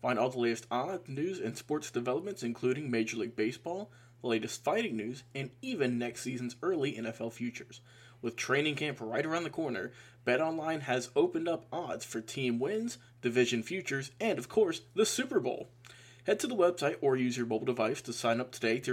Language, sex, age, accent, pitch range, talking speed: English, male, 20-39, American, 120-190 Hz, 195 wpm